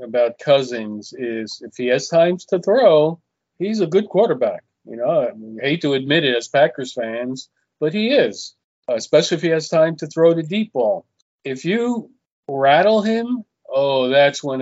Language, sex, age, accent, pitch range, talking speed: English, male, 40-59, American, 125-155 Hz, 180 wpm